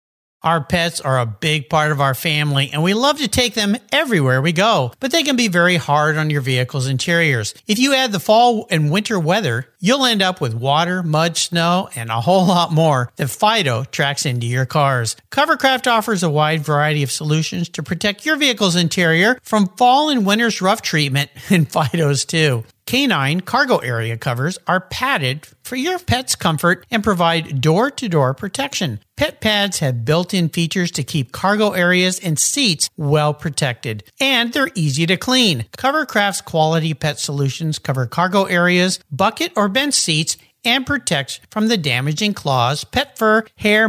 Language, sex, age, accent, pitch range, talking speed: English, male, 50-69, American, 150-215 Hz, 180 wpm